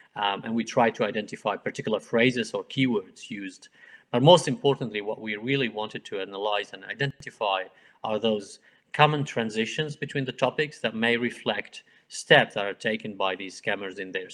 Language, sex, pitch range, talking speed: English, male, 105-135 Hz, 170 wpm